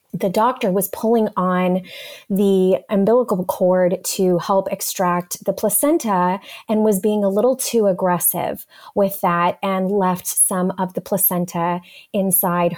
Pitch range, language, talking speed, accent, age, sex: 190-260 Hz, English, 135 wpm, American, 20-39, female